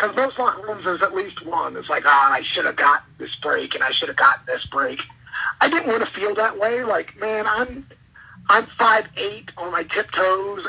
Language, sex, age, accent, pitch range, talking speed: English, male, 50-69, American, 180-245 Hz, 225 wpm